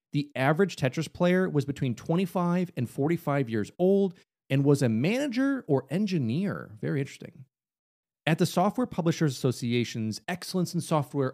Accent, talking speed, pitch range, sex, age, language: American, 145 wpm, 125-180 Hz, male, 30-49, English